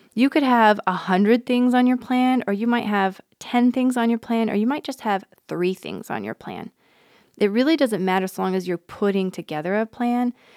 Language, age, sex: English, 20-39, female